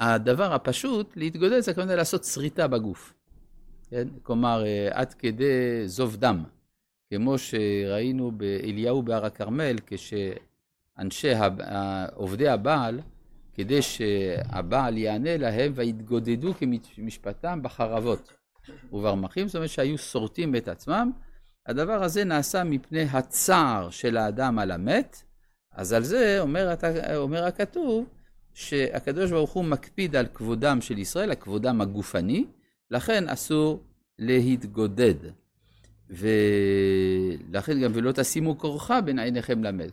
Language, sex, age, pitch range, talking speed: Hebrew, male, 50-69, 105-155 Hz, 110 wpm